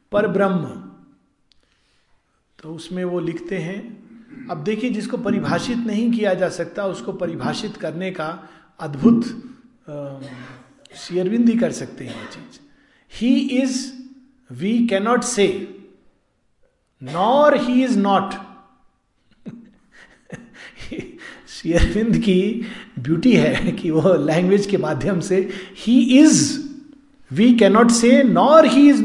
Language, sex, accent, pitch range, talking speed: Hindi, male, native, 185-255 Hz, 110 wpm